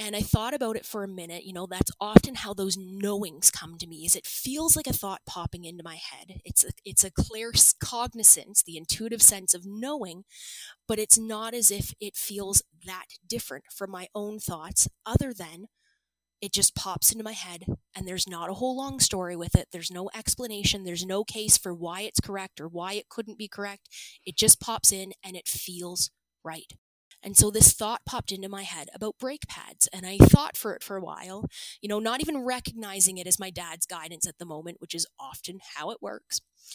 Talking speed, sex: 210 wpm, female